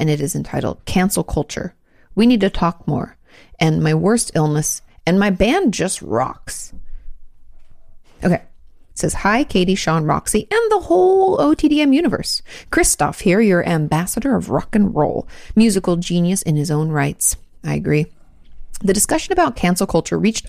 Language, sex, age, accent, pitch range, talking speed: English, female, 30-49, American, 165-220 Hz, 160 wpm